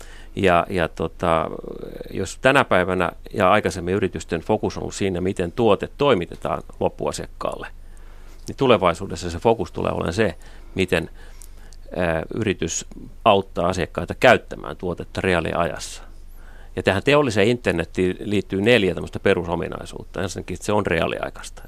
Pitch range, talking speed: 80-95 Hz, 120 wpm